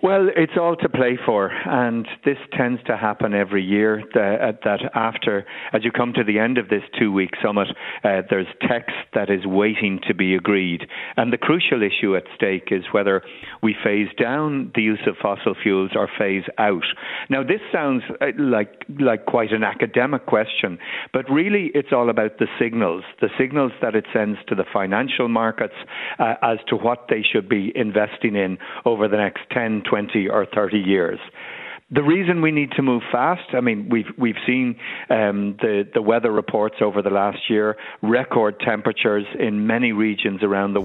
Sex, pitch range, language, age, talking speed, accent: male, 105-130 Hz, English, 50-69, 180 wpm, Irish